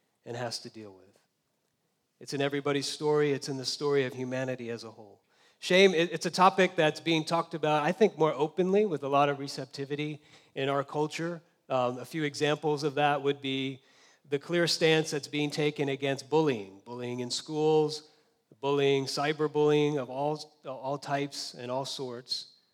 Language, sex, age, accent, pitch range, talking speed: English, male, 40-59, American, 135-155 Hz, 175 wpm